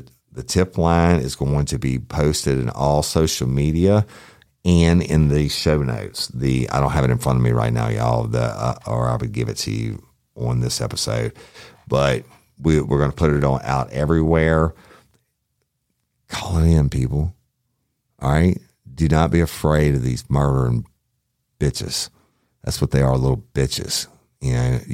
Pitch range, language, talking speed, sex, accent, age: 65-80 Hz, English, 175 wpm, male, American, 50-69